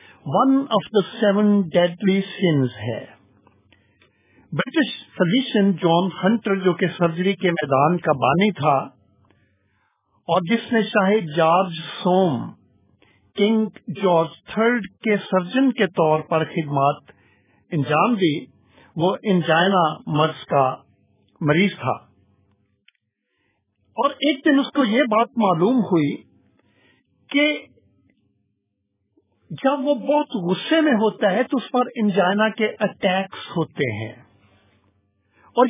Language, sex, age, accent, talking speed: English, male, 50-69, Indian, 110 wpm